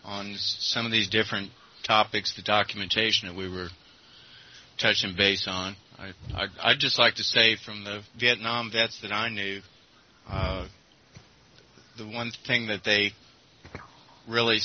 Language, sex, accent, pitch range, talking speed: English, male, American, 100-115 Hz, 145 wpm